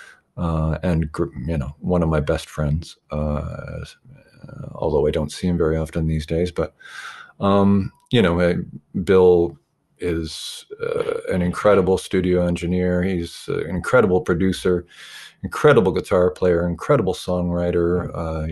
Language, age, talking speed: English, 50-69, 135 wpm